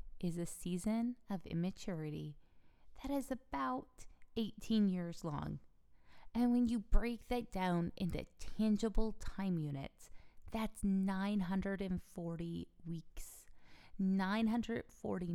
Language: English